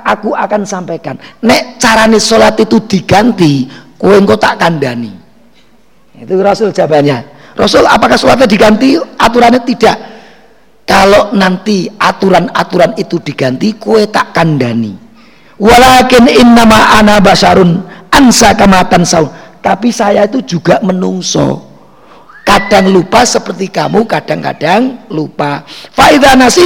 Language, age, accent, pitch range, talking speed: Indonesian, 40-59, native, 180-240 Hz, 110 wpm